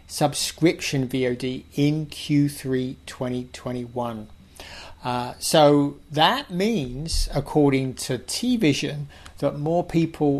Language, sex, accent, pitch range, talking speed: English, male, British, 125-155 Hz, 85 wpm